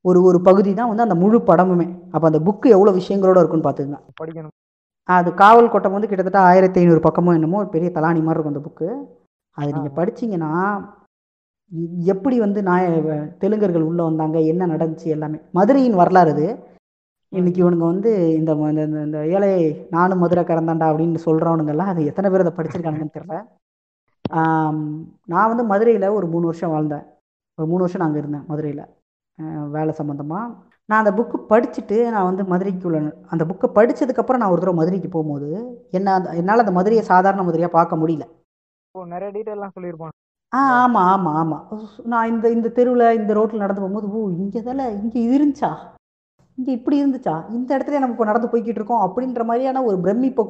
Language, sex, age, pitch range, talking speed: Tamil, female, 20-39, 160-215 Hz, 160 wpm